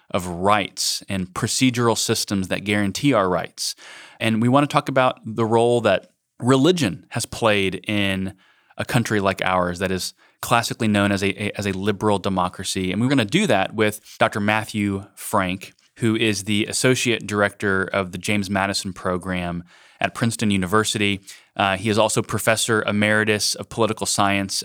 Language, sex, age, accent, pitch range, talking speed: English, male, 20-39, American, 100-115 Hz, 170 wpm